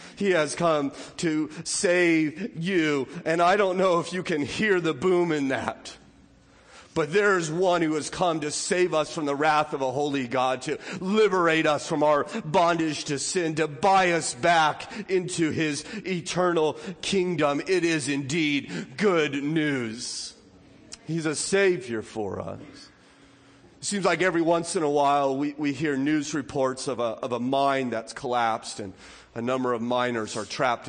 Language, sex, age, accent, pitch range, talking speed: English, male, 40-59, American, 140-175 Hz, 170 wpm